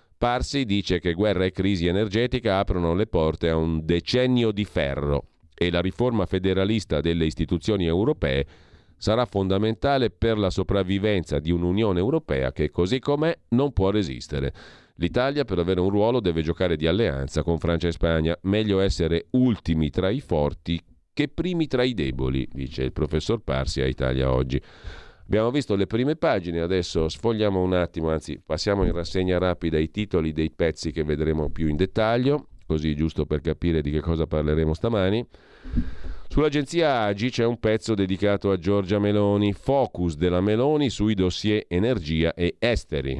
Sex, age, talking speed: male, 40-59, 160 wpm